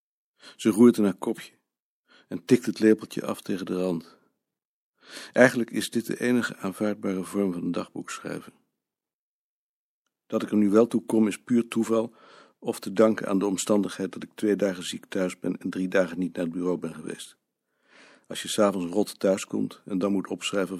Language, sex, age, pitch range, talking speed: Dutch, male, 50-69, 90-105 Hz, 190 wpm